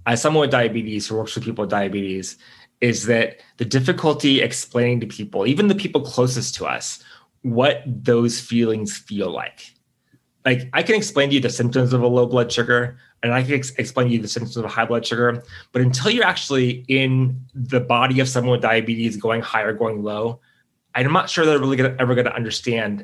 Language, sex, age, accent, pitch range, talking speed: English, male, 20-39, American, 115-140 Hz, 205 wpm